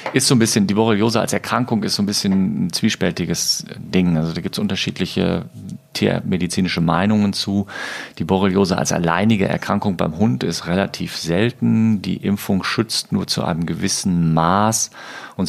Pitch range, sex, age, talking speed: 85-105 Hz, male, 40-59, 160 wpm